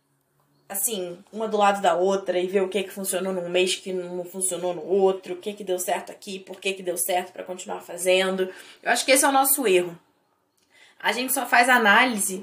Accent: Brazilian